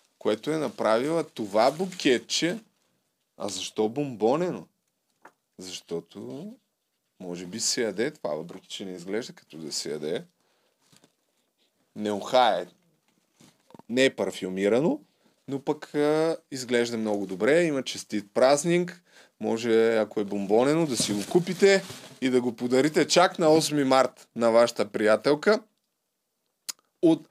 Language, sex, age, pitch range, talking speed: Bulgarian, male, 30-49, 120-165 Hz, 125 wpm